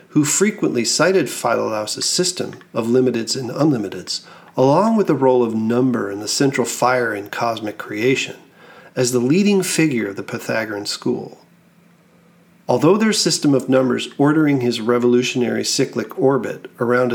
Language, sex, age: English, male, 40-59